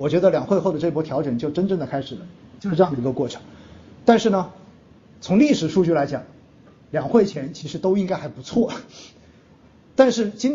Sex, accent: male, native